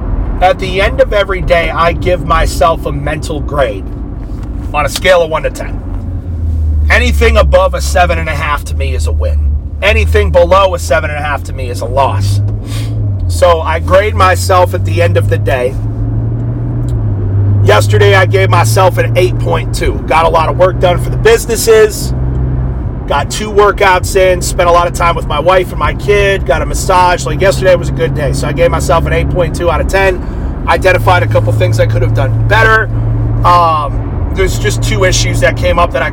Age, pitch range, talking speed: 40-59, 95-125 Hz, 190 wpm